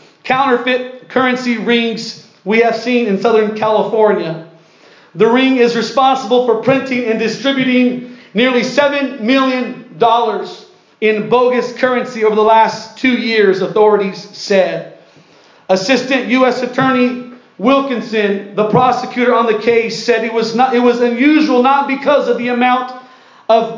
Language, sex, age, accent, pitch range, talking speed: English, male, 40-59, American, 225-260 Hz, 125 wpm